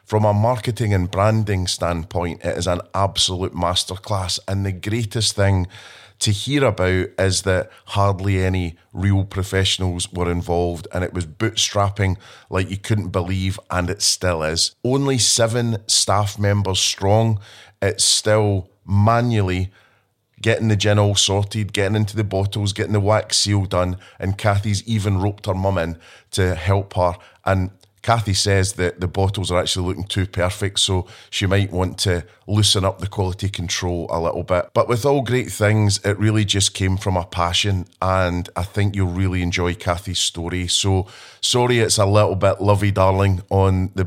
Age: 30-49